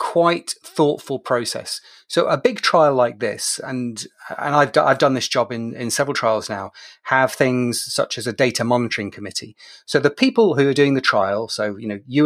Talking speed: 205 wpm